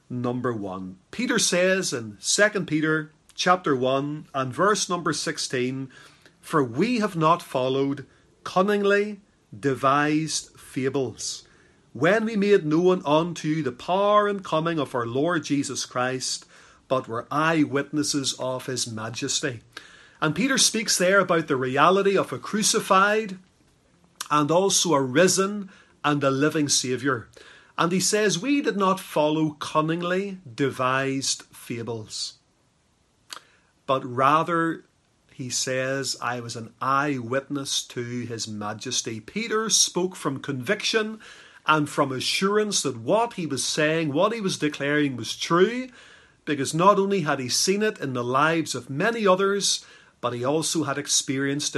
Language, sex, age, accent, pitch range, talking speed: English, male, 40-59, Irish, 130-185 Hz, 135 wpm